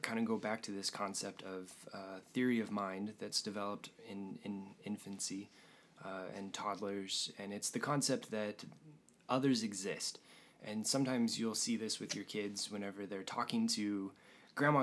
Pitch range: 95-115 Hz